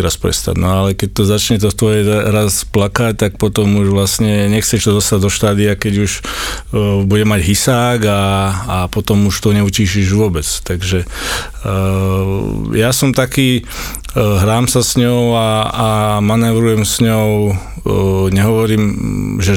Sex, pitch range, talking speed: male, 100-110 Hz, 155 wpm